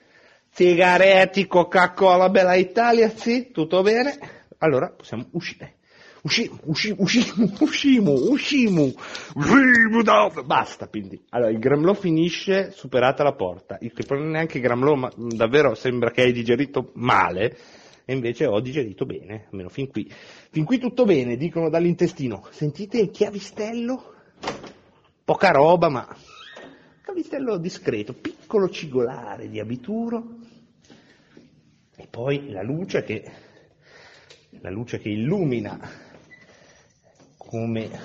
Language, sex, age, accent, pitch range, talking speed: Italian, male, 30-49, native, 125-205 Hz, 120 wpm